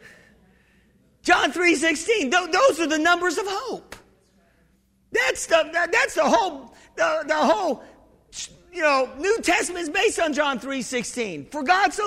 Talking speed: 140 wpm